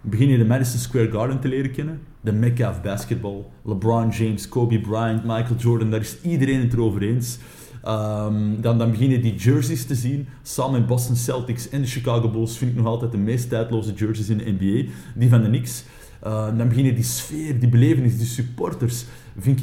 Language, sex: Dutch, male